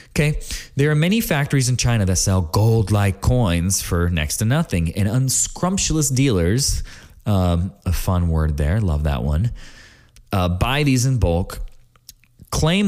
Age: 20-39